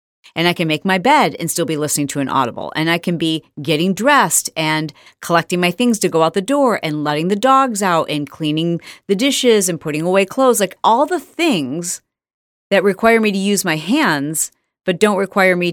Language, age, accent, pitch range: English, 40-59, American, 155-215 Hz